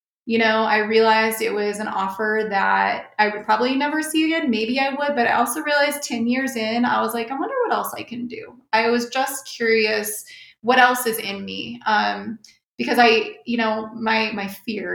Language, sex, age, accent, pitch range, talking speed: English, female, 30-49, American, 210-250 Hz, 210 wpm